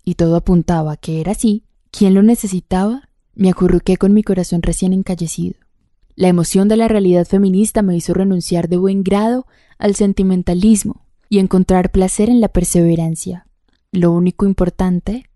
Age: 10-29